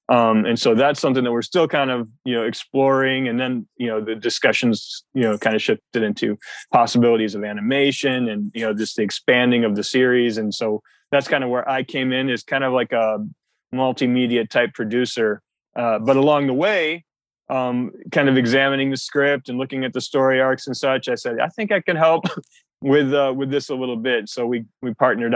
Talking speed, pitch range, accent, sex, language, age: 215 wpm, 110-135 Hz, American, male, English, 20-39